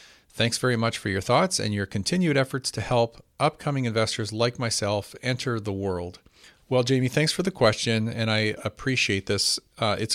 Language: English